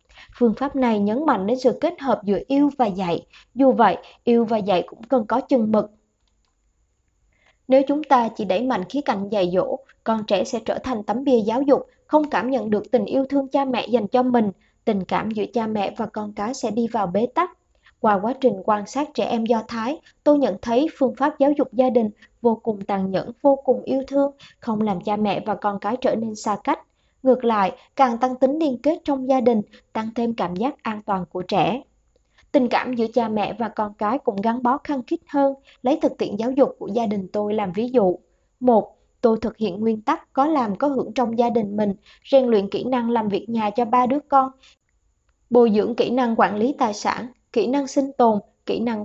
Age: 20-39